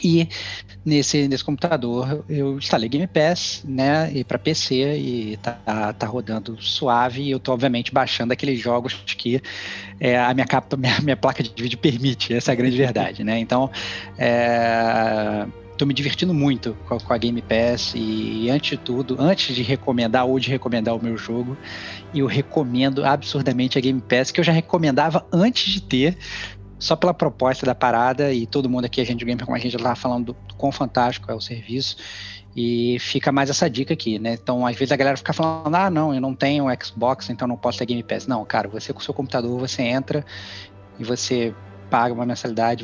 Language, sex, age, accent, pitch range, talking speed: Portuguese, male, 20-39, Brazilian, 120-140 Hz, 200 wpm